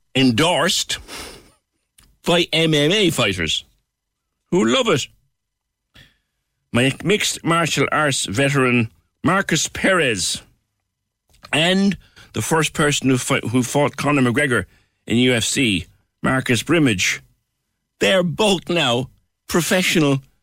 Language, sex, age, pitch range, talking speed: English, male, 60-79, 110-155 Hz, 90 wpm